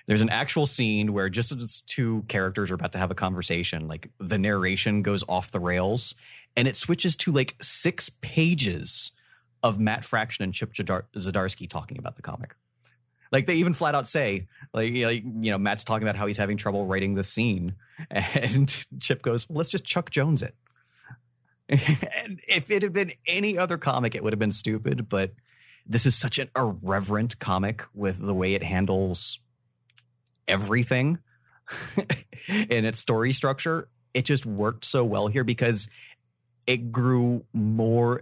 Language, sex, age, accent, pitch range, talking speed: English, male, 30-49, American, 95-125 Hz, 165 wpm